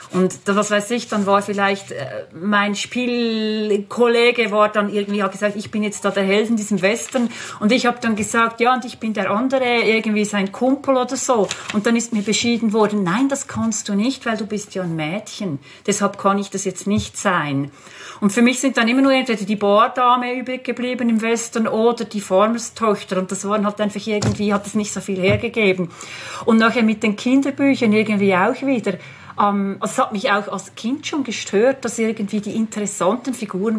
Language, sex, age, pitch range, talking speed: German, female, 40-59, 200-235 Hz, 205 wpm